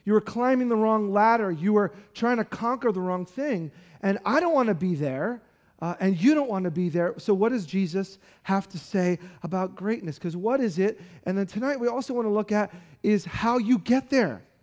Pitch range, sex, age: 175-230 Hz, male, 40-59